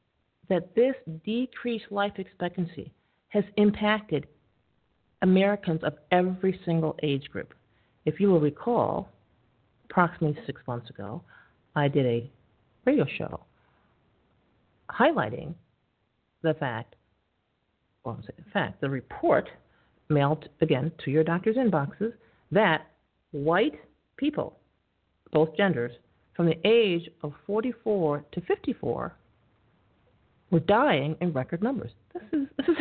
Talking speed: 110 wpm